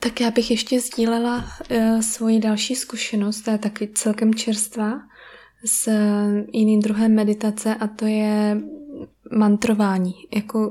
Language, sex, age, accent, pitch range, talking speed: Czech, female, 20-39, native, 205-225 Hz, 125 wpm